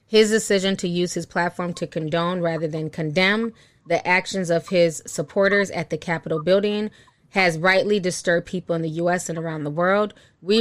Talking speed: 180 wpm